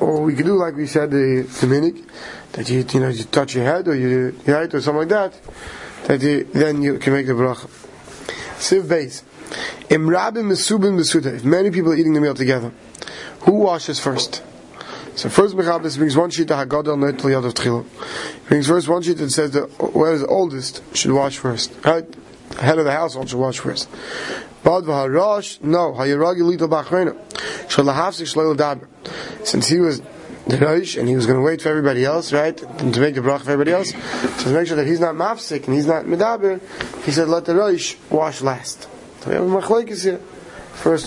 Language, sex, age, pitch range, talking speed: English, male, 30-49, 140-175 Hz, 185 wpm